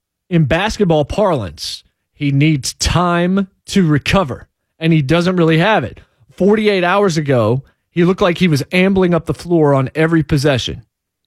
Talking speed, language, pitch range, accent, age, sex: 155 wpm, English, 140-185 Hz, American, 40-59, male